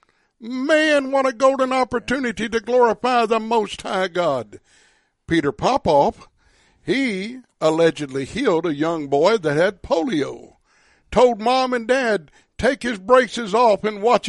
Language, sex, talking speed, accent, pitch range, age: English, male, 135 wpm, American, 170-240 Hz, 60-79